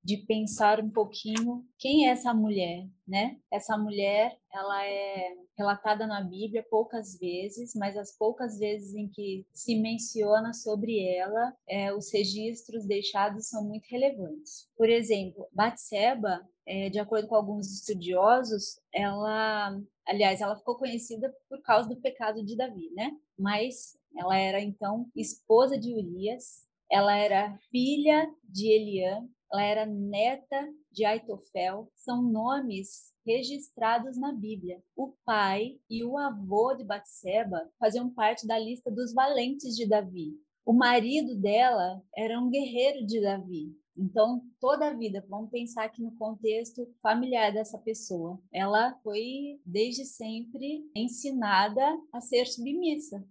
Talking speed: 135 wpm